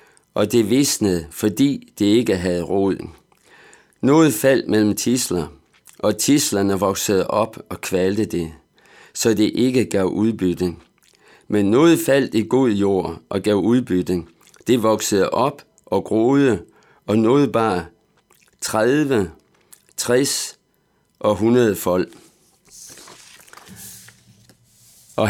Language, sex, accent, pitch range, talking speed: Danish, male, native, 95-130 Hz, 110 wpm